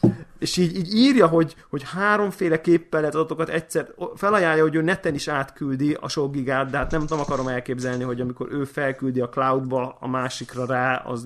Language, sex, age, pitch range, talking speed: Hungarian, male, 30-49, 125-155 Hz, 190 wpm